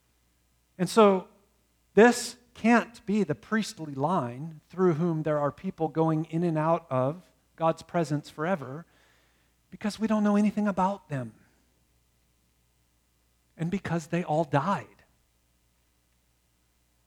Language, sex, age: English, male, 40-59